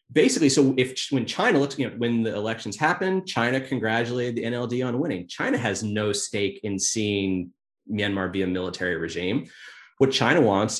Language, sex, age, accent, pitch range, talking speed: English, male, 30-49, American, 100-125 Hz, 165 wpm